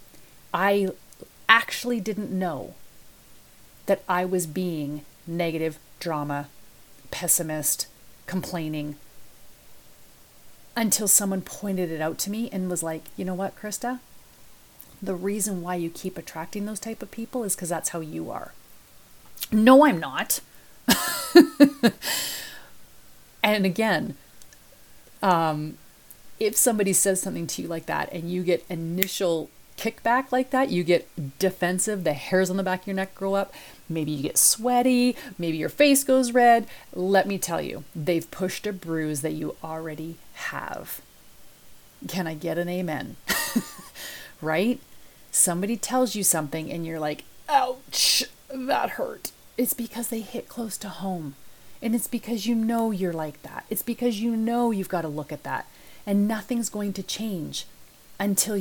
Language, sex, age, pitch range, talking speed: English, female, 30-49, 165-230 Hz, 145 wpm